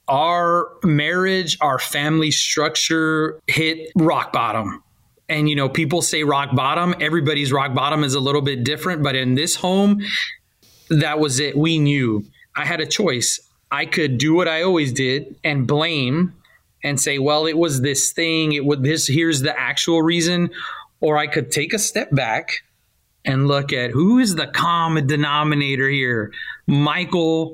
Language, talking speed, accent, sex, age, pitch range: English, 165 wpm, American, male, 30-49, 135-160 Hz